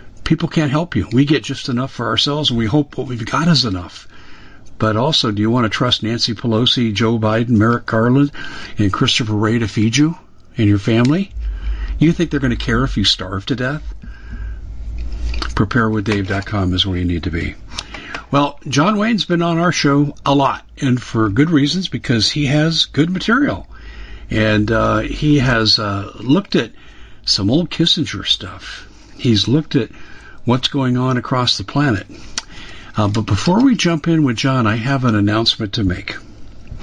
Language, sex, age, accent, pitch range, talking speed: English, male, 50-69, American, 100-140 Hz, 180 wpm